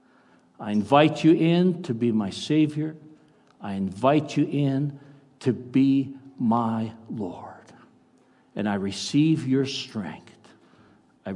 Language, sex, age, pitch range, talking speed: English, male, 60-79, 130-160 Hz, 115 wpm